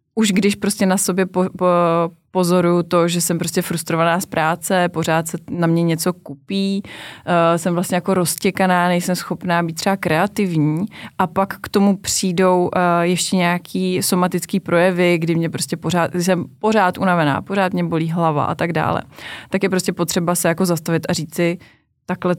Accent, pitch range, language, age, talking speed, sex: native, 165-185 Hz, Czech, 20-39, 155 wpm, female